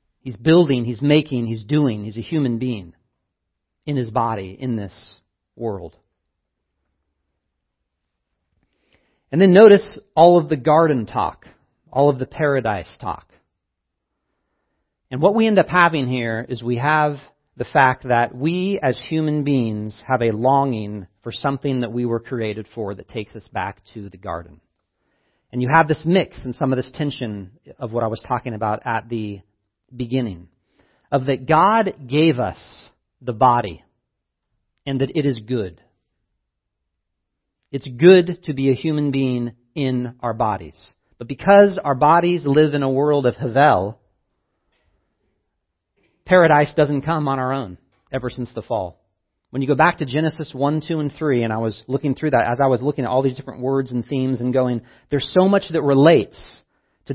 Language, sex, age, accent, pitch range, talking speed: English, male, 40-59, American, 110-145 Hz, 165 wpm